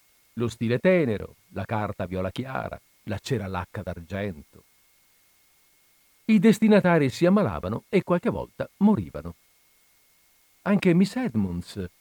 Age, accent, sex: 50-69, native, male